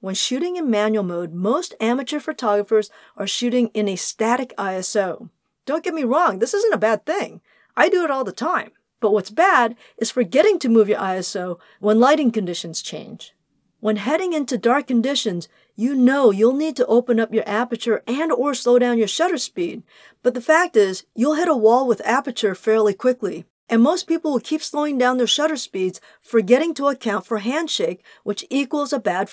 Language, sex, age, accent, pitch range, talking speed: English, female, 40-59, American, 210-275 Hz, 190 wpm